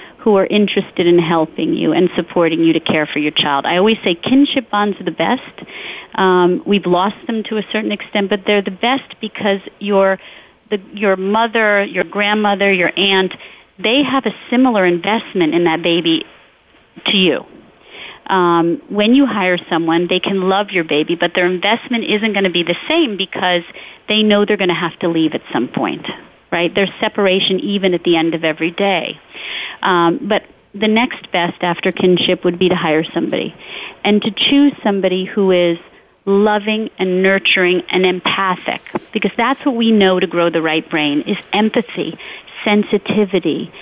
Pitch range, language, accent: 175-210 Hz, English, American